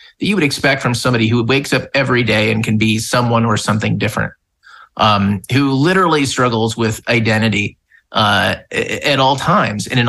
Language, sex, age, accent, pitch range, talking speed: English, male, 30-49, American, 110-135 Hz, 170 wpm